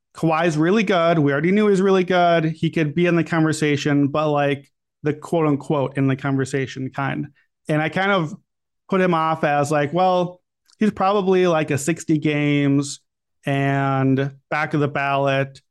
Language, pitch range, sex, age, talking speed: English, 145-175 Hz, male, 30-49, 170 wpm